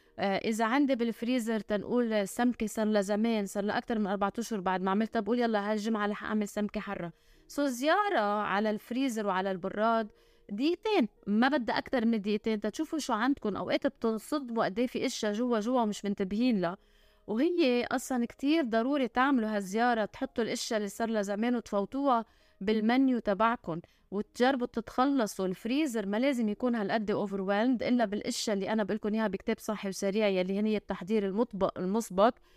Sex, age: female, 20-39